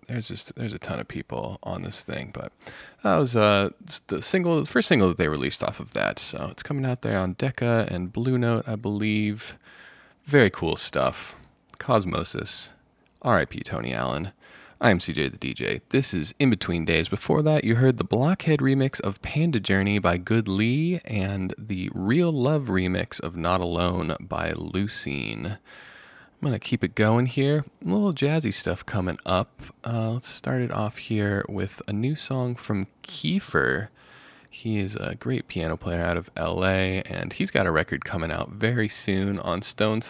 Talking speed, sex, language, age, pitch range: 180 wpm, male, English, 30-49, 95-125 Hz